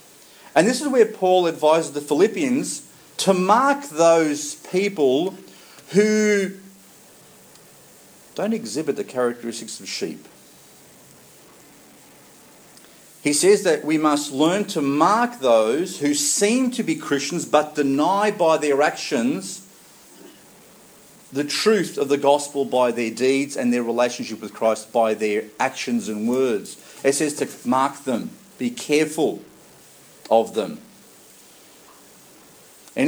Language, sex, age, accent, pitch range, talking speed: English, male, 50-69, Australian, 135-195 Hz, 120 wpm